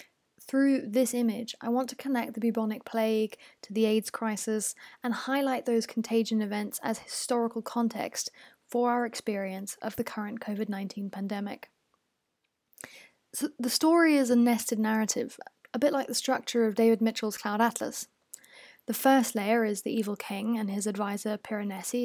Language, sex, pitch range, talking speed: English, female, 210-245 Hz, 160 wpm